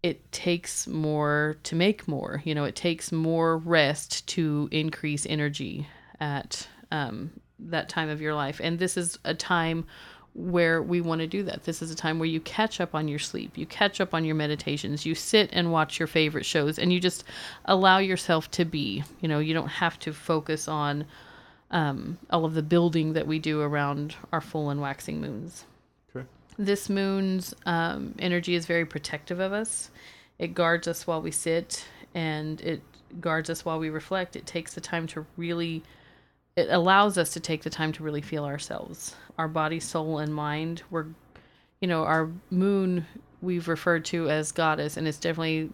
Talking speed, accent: 190 wpm, American